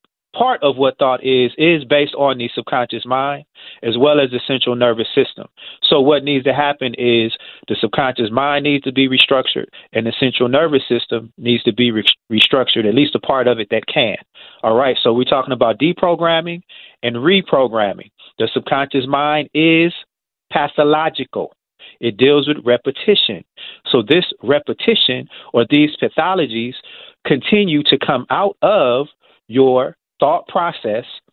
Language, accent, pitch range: English, American, 120-155 Hz